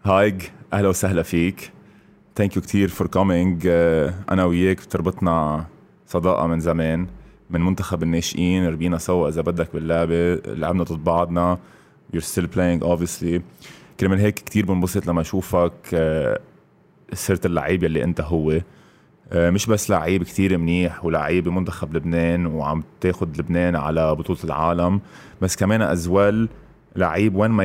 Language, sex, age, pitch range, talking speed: Arabic, male, 20-39, 85-95 Hz, 130 wpm